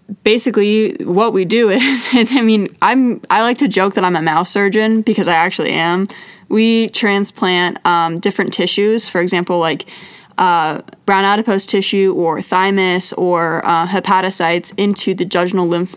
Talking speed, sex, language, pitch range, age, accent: 165 wpm, female, English, 180-210 Hz, 20-39, American